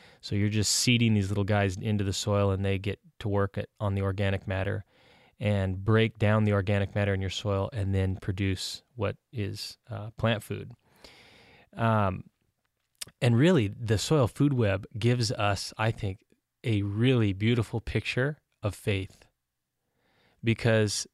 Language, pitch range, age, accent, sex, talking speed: English, 100-115 Hz, 20-39, American, male, 155 wpm